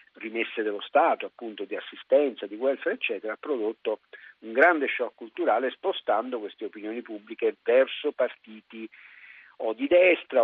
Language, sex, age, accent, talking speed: Italian, male, 50-69, native, 140 wpm